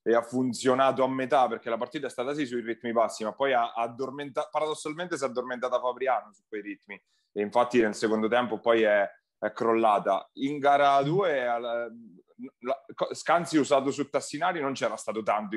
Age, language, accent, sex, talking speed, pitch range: 30-49, Italian, native, male, 185 wpm, 110-140 Hz